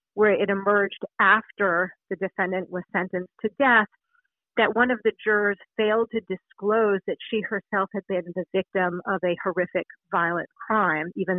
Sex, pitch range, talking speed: female, 185-220 Hz, 165 wpm